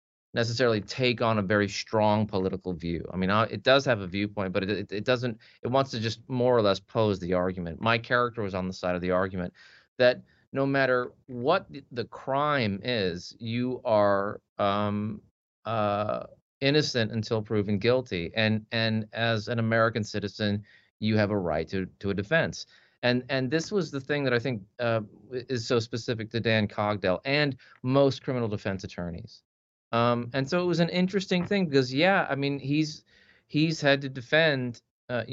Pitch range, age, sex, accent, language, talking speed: 105-125 Hz, 30-49, male, American, English, 180 wpm